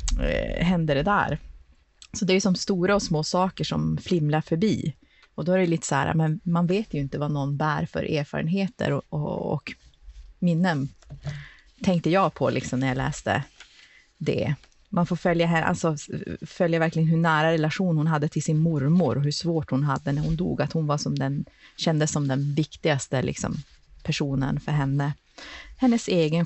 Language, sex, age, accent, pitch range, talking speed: Swedish, female, 30-49, native, 145-180 Hz, 185 wpm